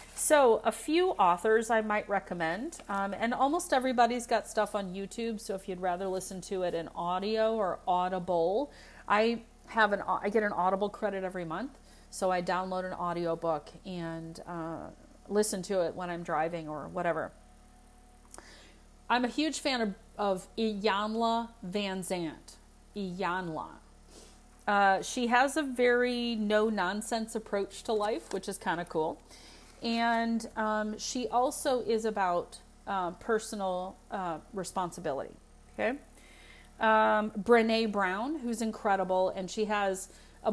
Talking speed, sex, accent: 140 wpm, female, American